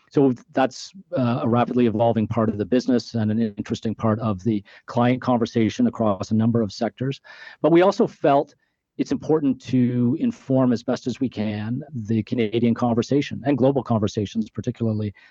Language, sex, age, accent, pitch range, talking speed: English, male, 40-59, American, 110-125 Hz, 170 wpm